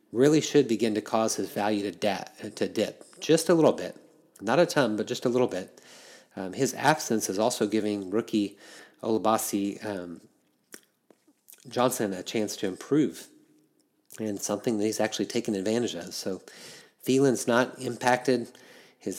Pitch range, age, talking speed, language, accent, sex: 100-120 Hz, 30-49, 155 wpm, English, American, male